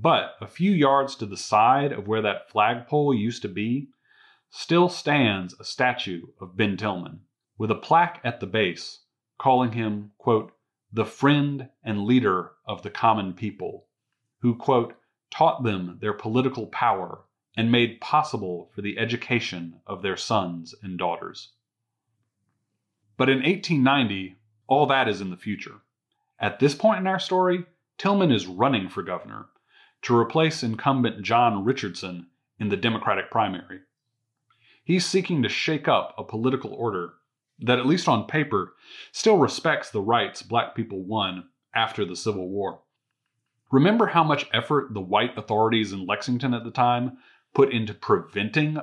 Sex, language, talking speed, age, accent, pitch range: male, English, 150 wpm, 30-49, American, 105-140 Hz